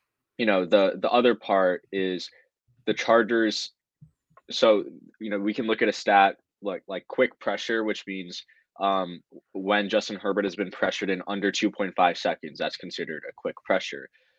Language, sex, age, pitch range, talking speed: English, male, 20-39, 95-115 Hz, 165 wpm